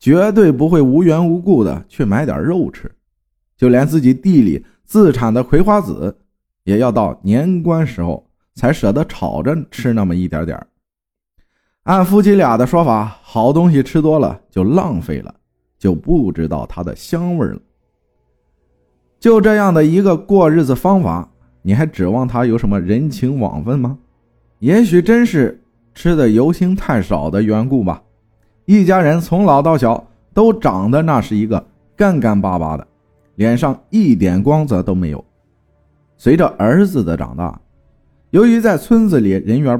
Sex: male